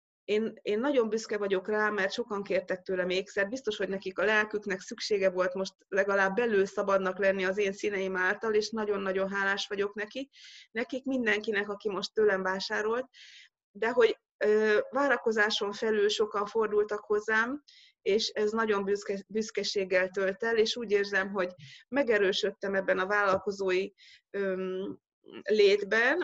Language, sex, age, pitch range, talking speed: Hungarian, female, 20-39, 195-230 Hz, 145 wpm